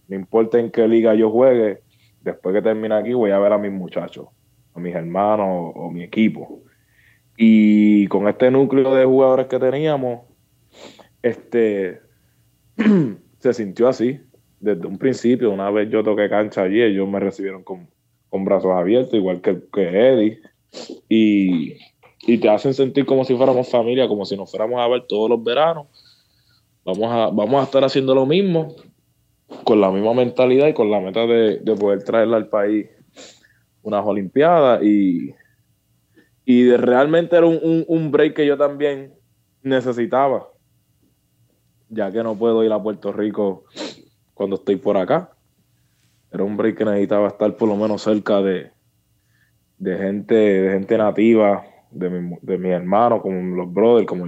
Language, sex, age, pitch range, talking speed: Spanish, male, 20-39, 100-125 Hz, 160 wpm